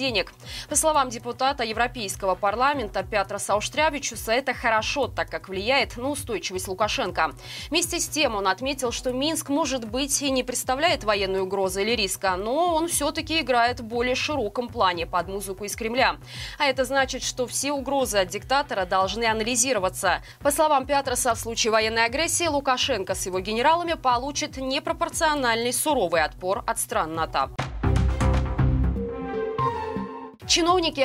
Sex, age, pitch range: female, 20-39, 205-280 Hz